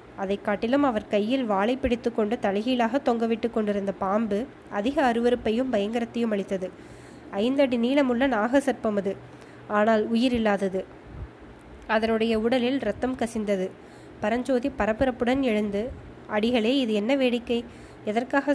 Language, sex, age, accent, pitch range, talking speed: Tamil, female, 20-39, native, 210-250 Hz, 105 wpm